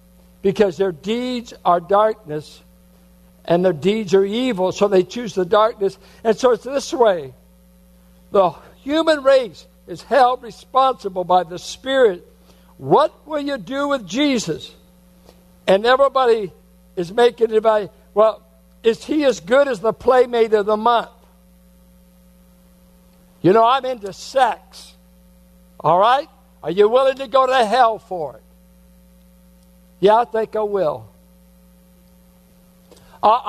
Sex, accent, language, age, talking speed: male, American, English, 60-79, 130 wpm